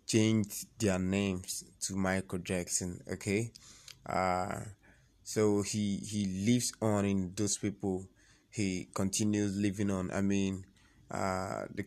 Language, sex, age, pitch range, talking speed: English, male, 20-39, 95-105 Hz, 120 wpm